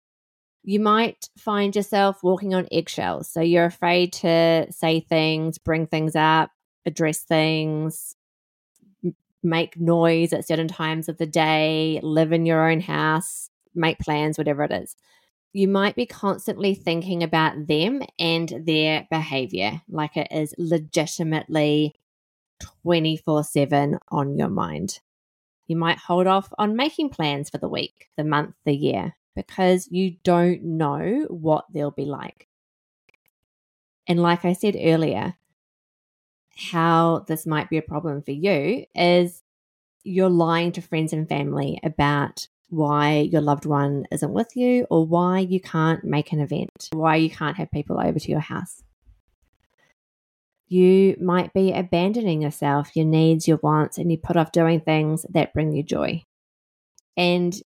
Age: 20-39